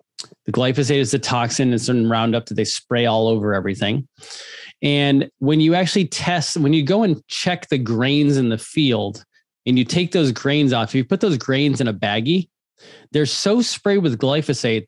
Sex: male